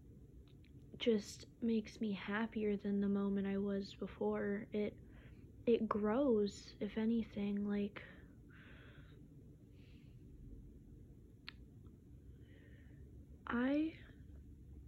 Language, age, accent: English, 20-39, American